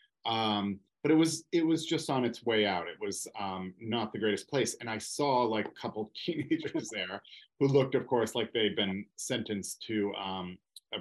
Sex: male